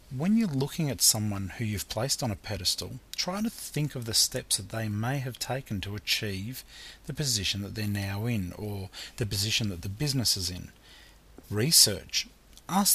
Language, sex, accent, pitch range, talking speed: English, male, Australian, 105-140 Hz, 185 wpm